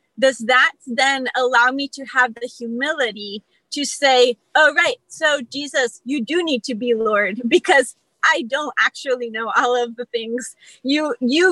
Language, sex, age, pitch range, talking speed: English, female, 30-49, 245-295 Hz, 165 wpm